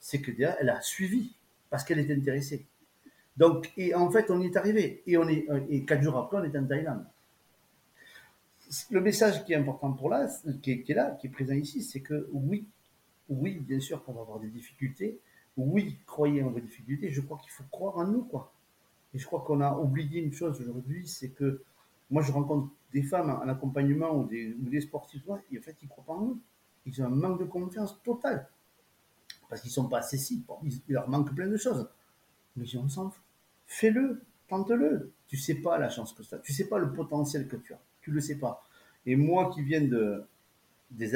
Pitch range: 130-170 Hz